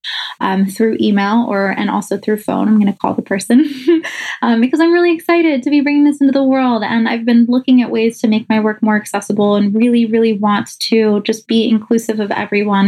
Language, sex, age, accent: English, female, 20-39, American